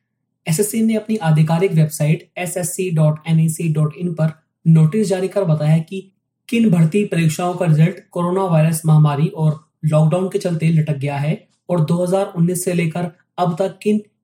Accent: native